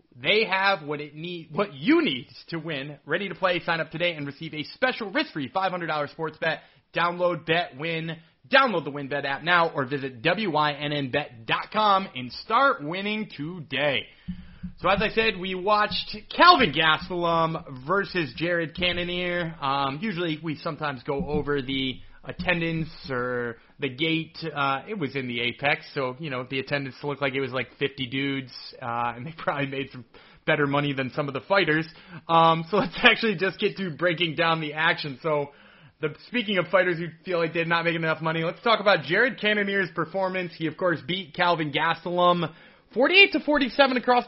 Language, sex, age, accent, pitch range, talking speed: English, male, 30-49, American, 145-190 Hz, 180 wpm